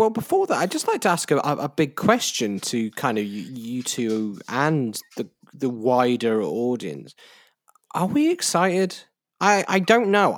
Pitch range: 115-150 Hz